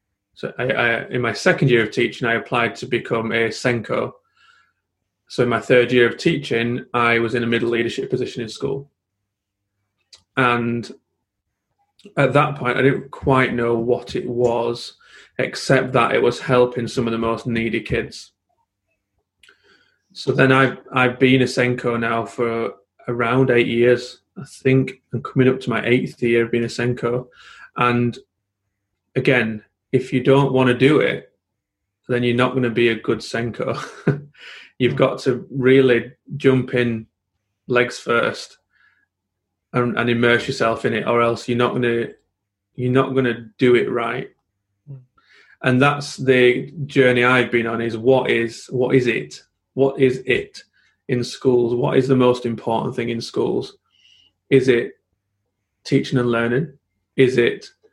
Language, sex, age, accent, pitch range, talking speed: English, male, 30-49, British, 115-130 Hz, 160 wpm